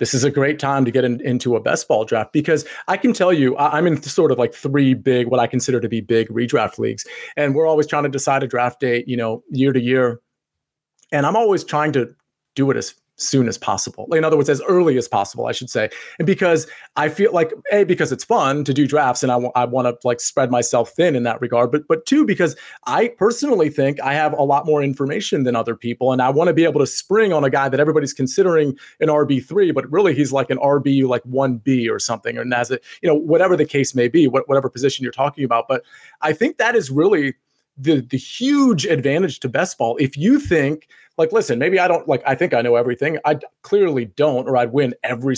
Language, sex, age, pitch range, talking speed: English, male, 30-49, 125-165 Hz, 245 wpm